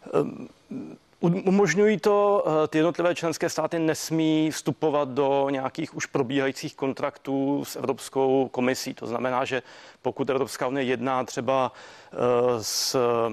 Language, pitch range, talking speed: Czech, 125-135 Hz, 110 wpm